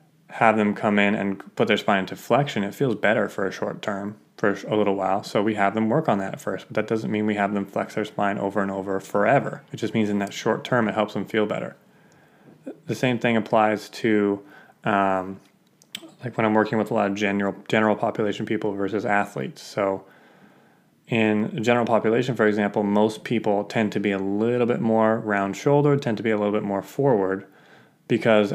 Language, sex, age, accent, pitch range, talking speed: English, male, 20-39, American, 100-110 Hz, 215 wpm